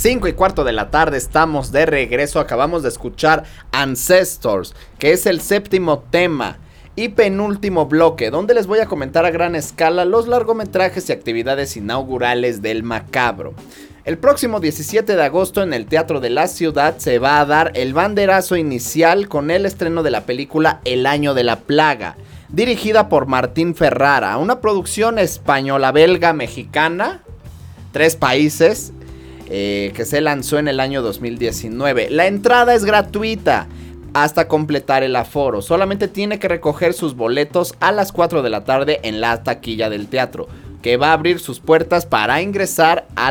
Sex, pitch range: male, 120-175 Hz